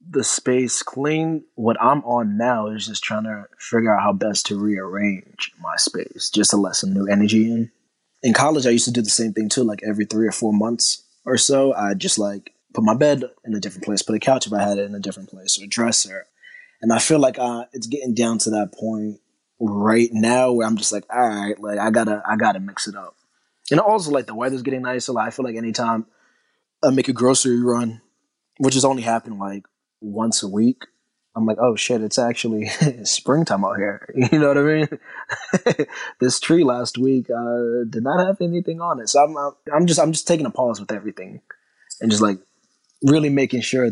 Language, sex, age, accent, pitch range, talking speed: English, male, 20-39, American, 110-135 Hz, 225 wpm